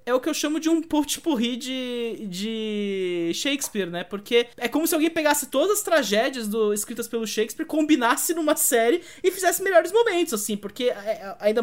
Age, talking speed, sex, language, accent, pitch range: 20-39, 180 wpm, male, English, Brazilian, 210-260 Hz